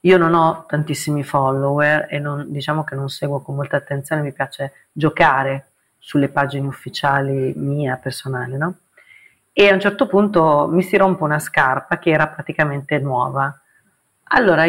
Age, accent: 40-59, native